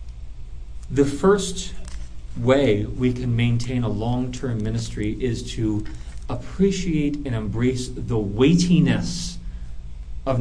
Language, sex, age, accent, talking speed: English, male, 40-59, American, 100 wpm